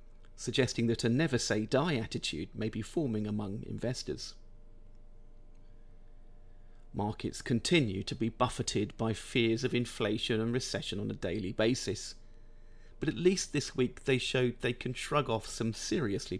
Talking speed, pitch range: 140 wpm, 100-125 Hz